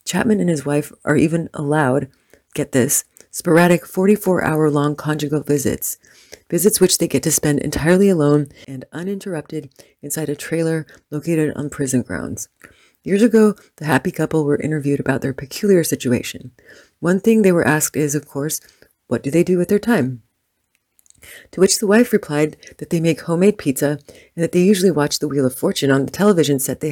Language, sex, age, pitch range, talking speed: English, female, 30-49, 140-185 Hz, 180 wpm